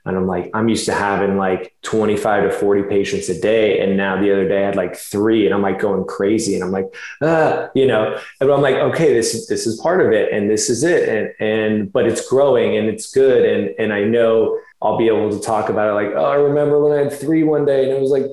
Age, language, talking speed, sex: 20-39, English, 270 wpm, male